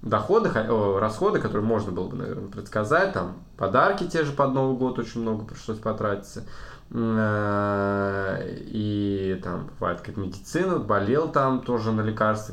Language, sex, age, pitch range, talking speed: Russian, male, 20-39, 105-135 Hz, 145 wpm